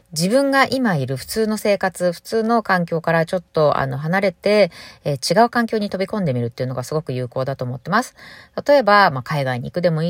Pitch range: 150-235 Hz